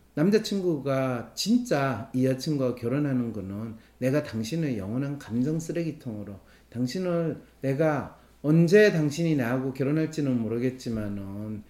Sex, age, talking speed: male, 40-59, 90 wpm